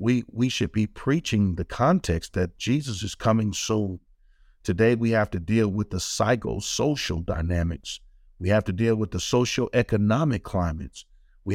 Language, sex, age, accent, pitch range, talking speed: English, male, 50-69, American, 105-140 Hz, 155 wpm